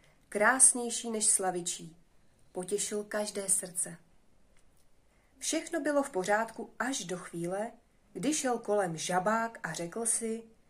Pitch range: 175-240 Hz